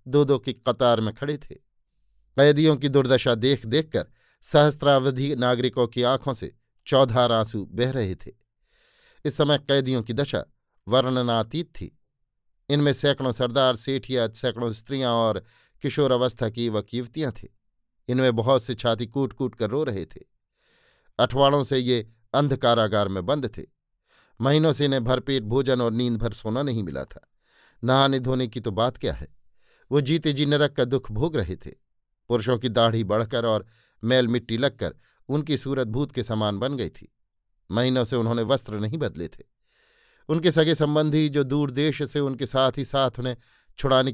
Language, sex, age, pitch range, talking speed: Hindi, male, 50-69, 115-140 Hz, 165 wpm